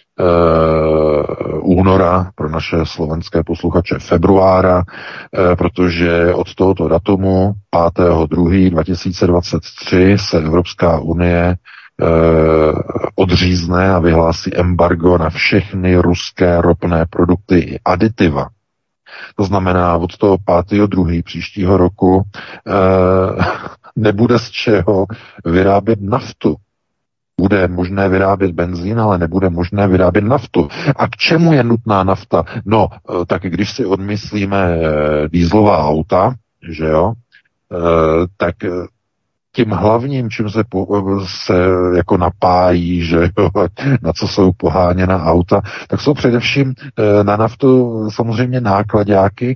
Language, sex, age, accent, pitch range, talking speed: Czech, male, 40-59, native, 85-105 Hz, 105 wpm